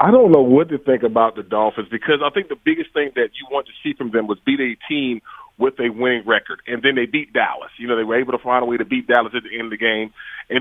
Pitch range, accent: 115-150 Hz, American